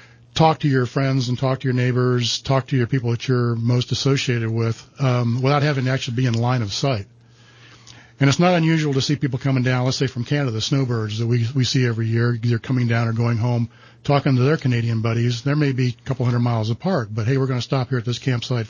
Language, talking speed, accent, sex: English, 245 wpm, American, male